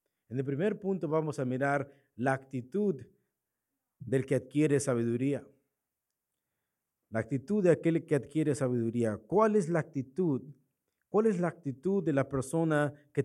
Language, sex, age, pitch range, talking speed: Spanish, male, 50-69, 130-165 Hz, 145 wpm